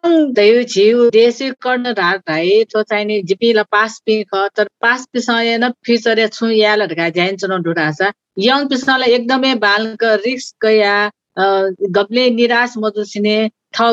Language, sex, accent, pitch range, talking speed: English, female, Indian, 200-245 Hz, 75 wpm